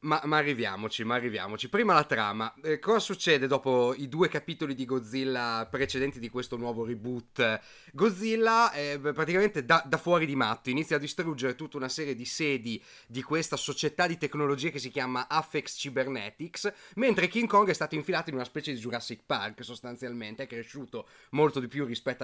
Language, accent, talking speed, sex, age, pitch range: Italian, native, 185 wpm, male, 30-49, 125-175 Hz